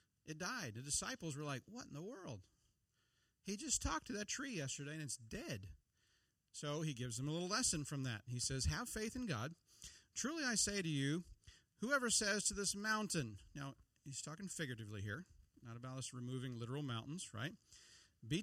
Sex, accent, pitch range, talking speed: male, American, 125-190 Hz, 190 wpm